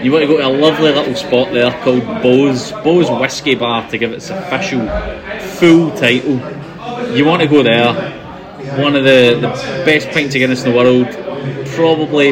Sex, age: male, 20-39